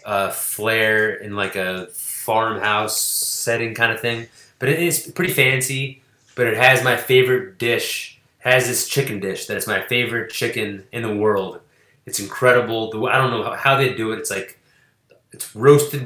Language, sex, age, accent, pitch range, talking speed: English, male, 20-39, American, 110-125 Hz, 170 wpm